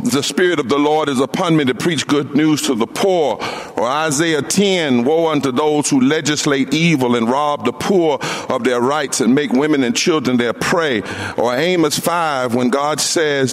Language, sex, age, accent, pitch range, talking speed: English, male, 50-69, American, 130-165 Hz, 195 wpm